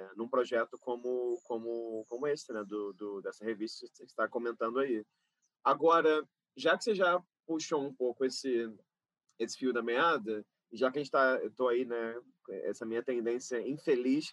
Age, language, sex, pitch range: 20-39, Portuguese, male, 120-165 Hz